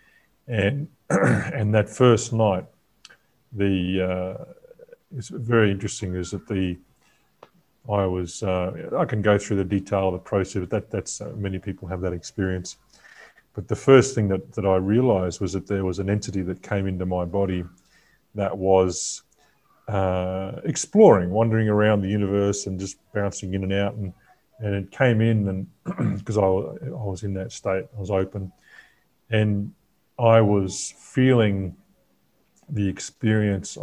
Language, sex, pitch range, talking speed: English, male, 95-115 Hz, 160 wpm